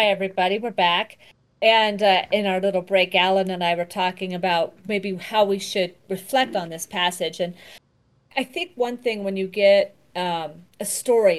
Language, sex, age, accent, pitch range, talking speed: English, female, 40-59, American, 175-215 Hz, 185 wpm